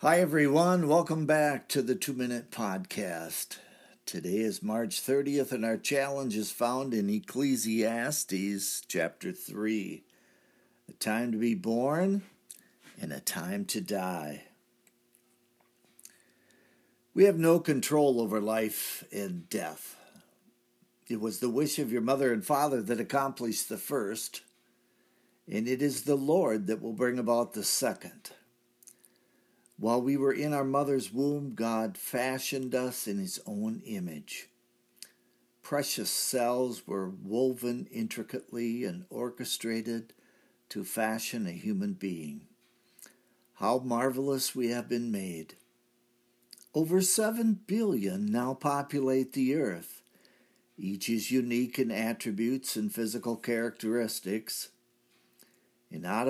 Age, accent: 60-79, American